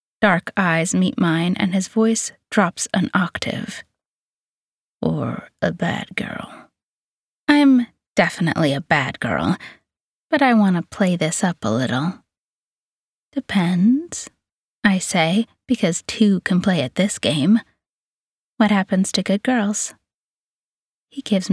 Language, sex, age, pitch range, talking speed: English, female, 30-49, 175-220 Hz, 125 wpm